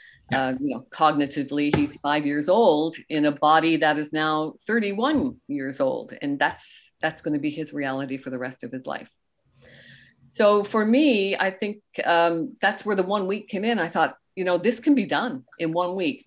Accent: American